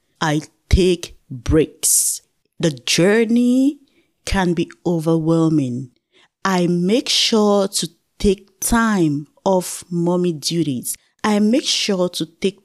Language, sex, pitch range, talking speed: English, female, 160-215 Hz, 105 wpm